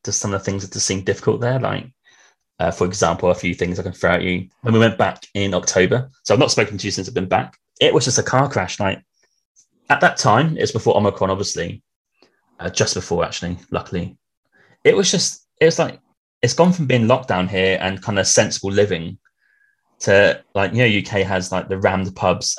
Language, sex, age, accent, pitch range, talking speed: English, male, 20-39, British, 95-120 Hz, 225 wpm